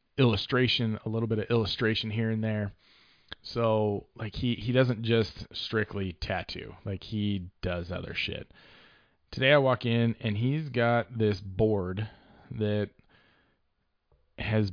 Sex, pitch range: male, 95-115 Hz